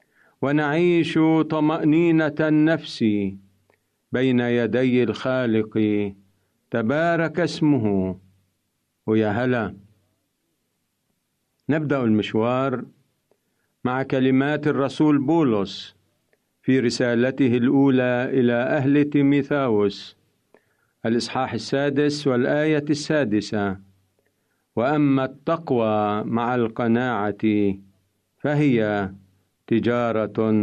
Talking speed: 65 wpm